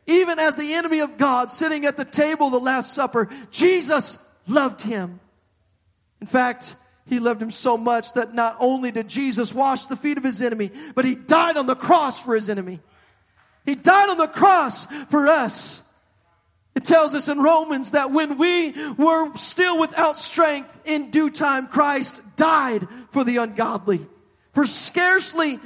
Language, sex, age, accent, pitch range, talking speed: English, male, 40-59, American, 245-325 Hz, 170 wpm